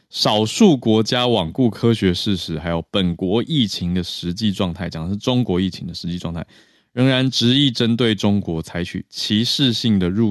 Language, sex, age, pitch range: Chinese, male, 20-39, 90-115 Hz